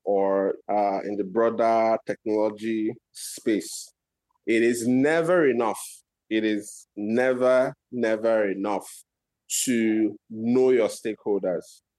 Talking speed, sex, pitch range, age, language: 100 wpm, male, 110-130 Hz, 20-39, English